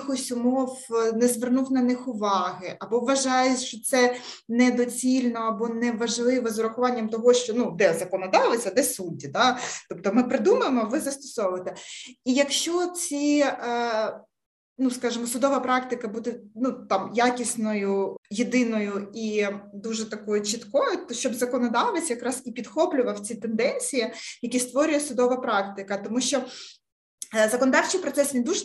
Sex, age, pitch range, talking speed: female, 20-39, 215-255 Hz, 135 wpm